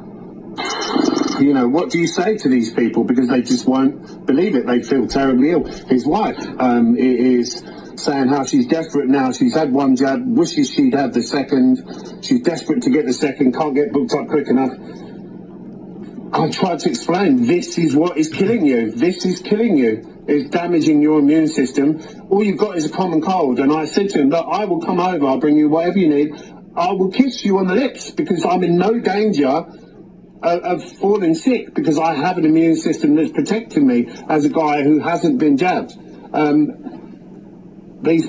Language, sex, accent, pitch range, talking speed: English, male, British, 145-210 Hz, 195 wpm